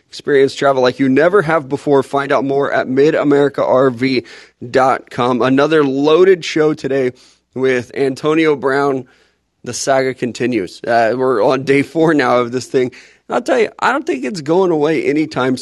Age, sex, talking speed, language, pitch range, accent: 20-39, male, 160 wpm, English, 125-155 Hz, American